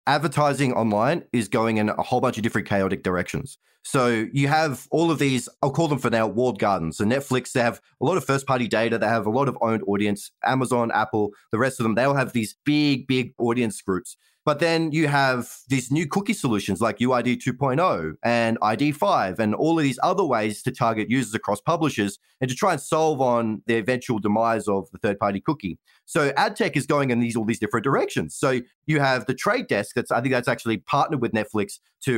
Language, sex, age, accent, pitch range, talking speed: English, male, 30-49, Australian, 115-145 Hz, 220 wpm